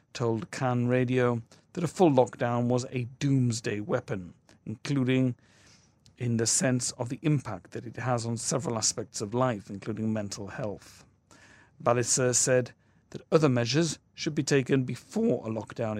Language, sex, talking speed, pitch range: English, male, 150 wpm, 110-140 Hz